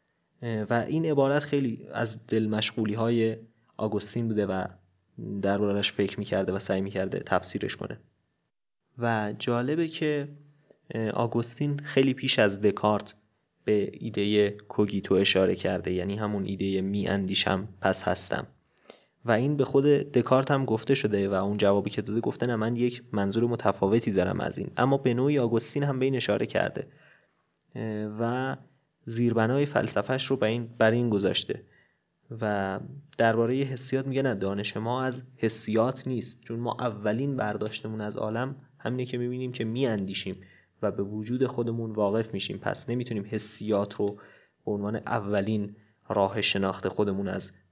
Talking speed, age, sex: 150 wpm, 20-39, male